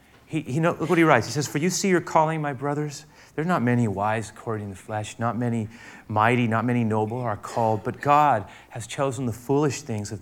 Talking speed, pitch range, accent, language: 235 wpm, 120-180 Hz, American, English